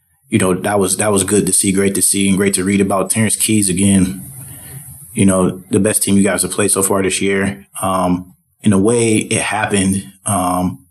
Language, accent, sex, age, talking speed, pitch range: English, American, male, 20-39, 220 wpm, 95-105 Hz